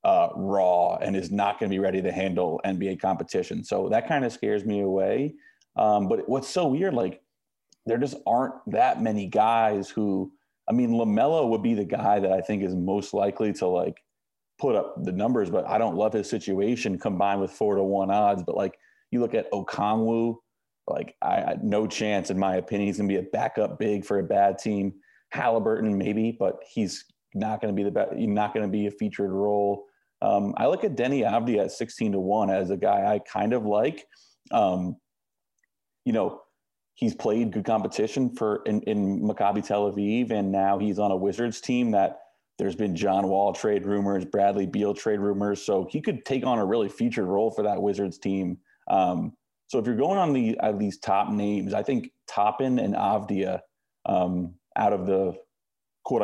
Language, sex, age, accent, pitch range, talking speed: English, male, 30-49, American, 100-110 Hz, 200 wpm